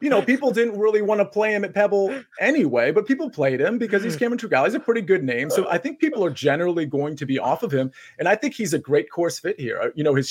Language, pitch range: English, 135-185 Hz